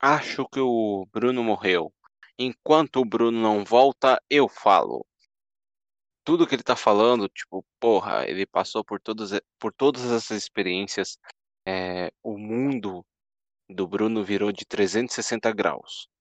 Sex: male